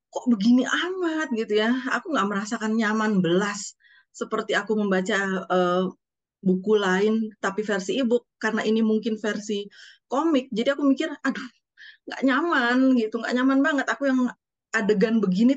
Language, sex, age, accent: Indonesian, female, 30-49, native